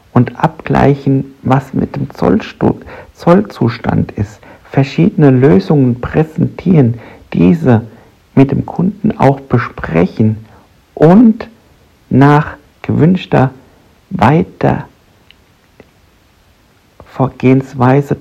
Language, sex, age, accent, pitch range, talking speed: German, male, 60-79, German, 115-155 Hz, 65 wpm